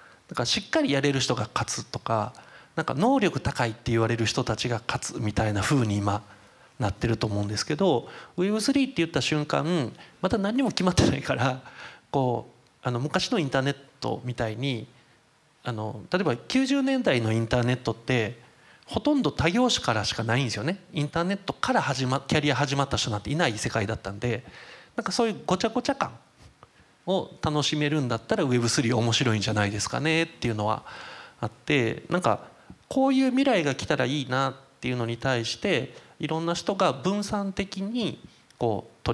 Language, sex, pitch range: Japanese, male, 115-170 Hz